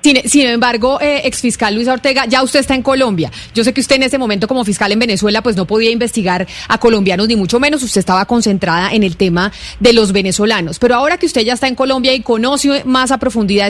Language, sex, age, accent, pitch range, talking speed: Spanish, female, 30-49, Colombian, 205-255 Hz, 240 wpm